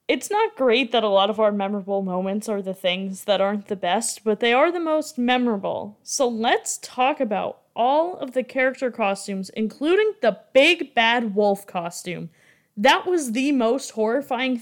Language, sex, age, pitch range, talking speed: English, female, 20-39, 210-285 Hz, 175 wpm